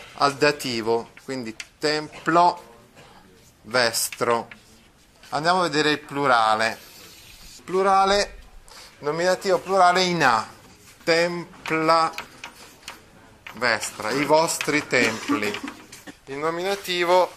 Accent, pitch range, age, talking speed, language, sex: native, 125-185 Hz, 30-49, 75 wpm, Italian, male